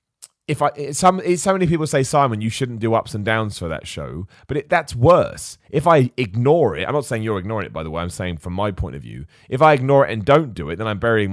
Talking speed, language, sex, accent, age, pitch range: 275 wpm, English, male, British, 30-49, 95-135 Hz